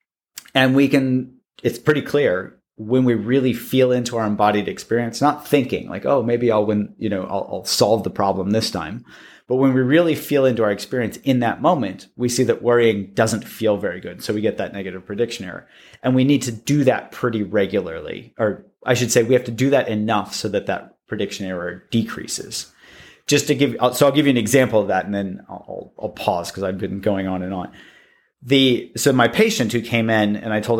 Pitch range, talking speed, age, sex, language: 105-130 Hz, 220 wpm, 30-49, male, English